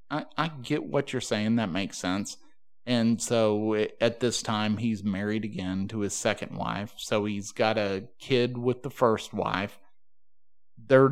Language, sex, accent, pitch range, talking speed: English, male, American, 105-130 Hz, 165 wpm